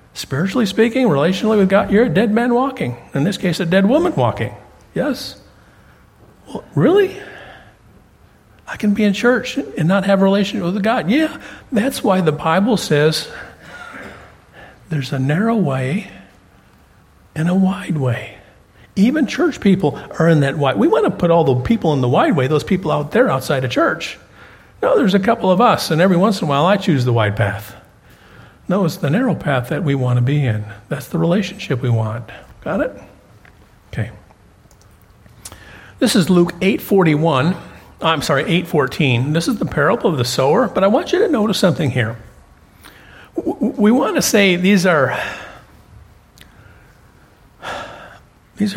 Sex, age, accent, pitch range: male, 50-69, American, 120-200 Hz